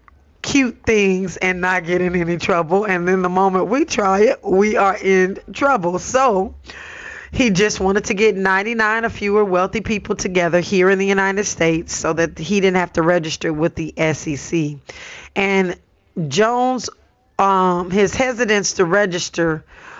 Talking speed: 160 wpm